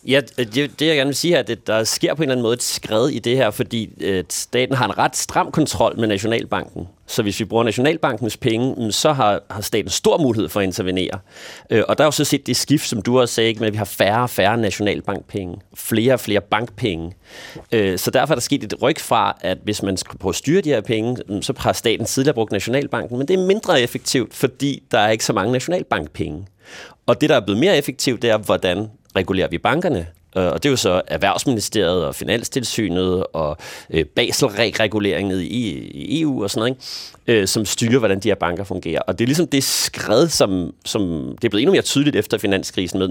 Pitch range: 95-130 Hz